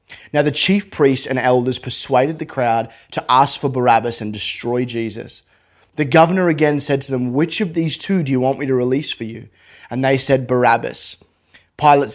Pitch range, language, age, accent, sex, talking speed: 125-150 Hz, English, 20-39, Australian, male, 195 wpm